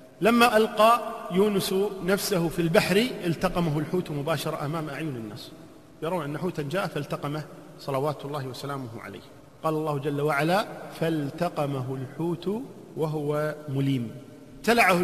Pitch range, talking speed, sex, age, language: 155-185 Hz, 120 wpm, male, 40-59, Arabic